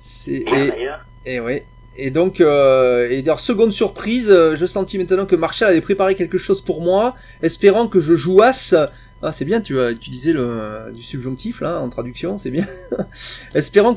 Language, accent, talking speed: French, French, 175 wpm